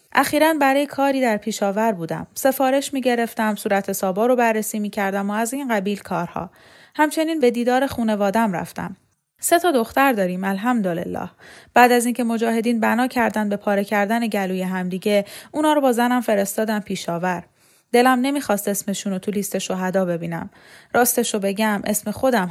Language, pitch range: Persian, 200-250 Hz